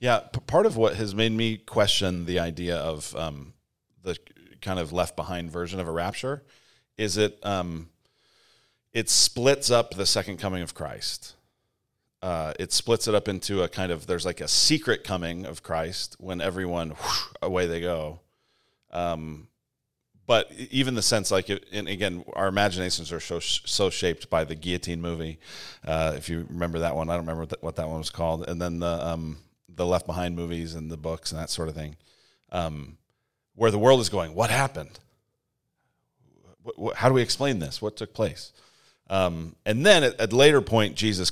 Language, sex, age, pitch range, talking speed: English, male, 40-59, 85-105 Hz, 190 wpm